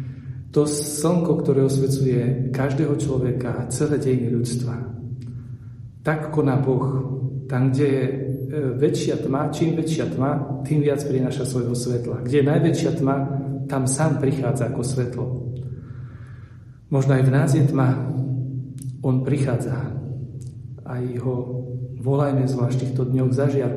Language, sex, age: Slovak, male, 40-59